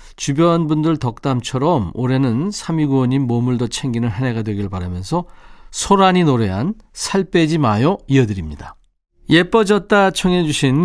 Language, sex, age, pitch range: Korean, male, 40-59, 115-165 Hz